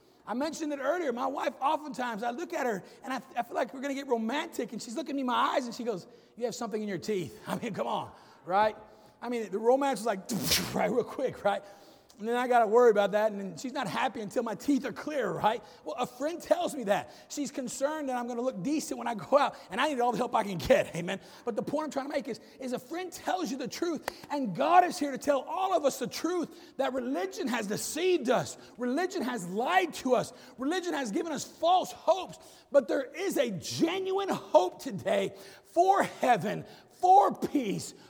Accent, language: American, English